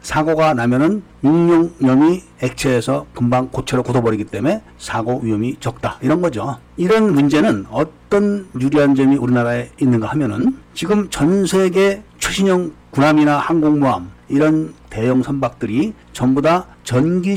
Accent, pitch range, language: native, 125-175 Hz, Korean